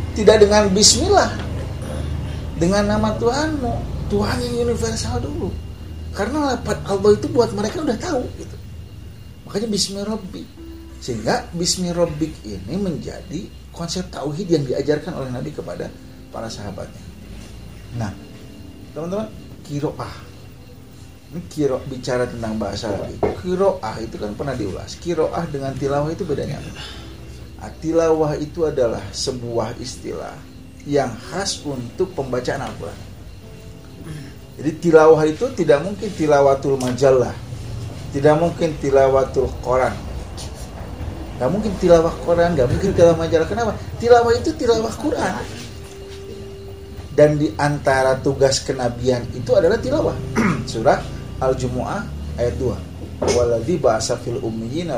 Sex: male